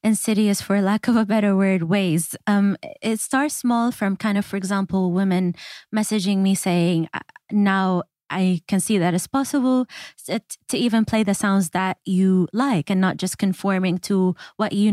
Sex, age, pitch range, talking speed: female, 20-39, 180-225 Hz, 175 wpm